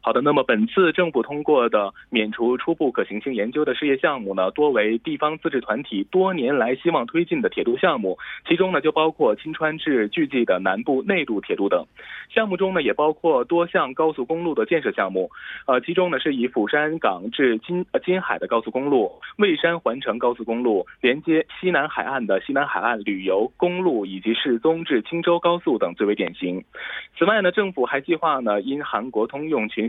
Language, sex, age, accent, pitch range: Korean, male, 20-39, Chinese, 120-185 Hz